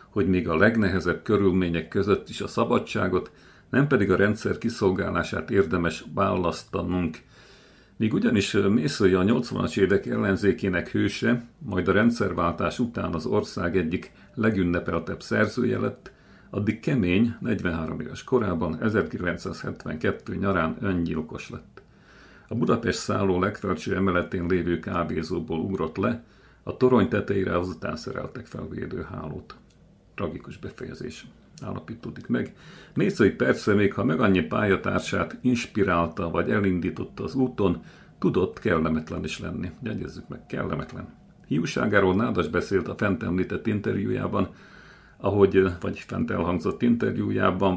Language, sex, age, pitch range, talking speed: Hungarian, male, 50-69, 85-105 Hz, 115 wpm